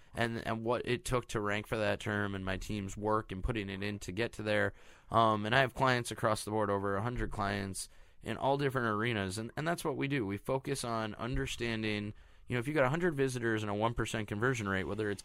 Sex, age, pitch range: male, 20-39, 100-120 Hz